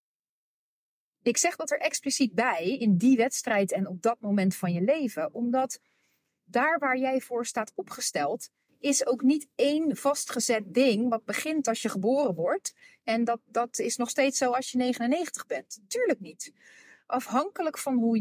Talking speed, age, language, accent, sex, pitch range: 170 wpm, 40-59, Dutch, Dutch, female, 205-285 Hz